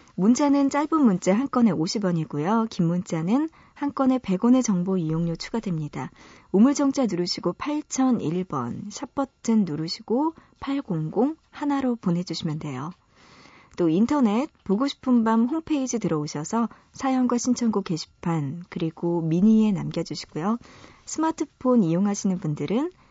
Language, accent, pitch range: Korean, native, 170-250 Hz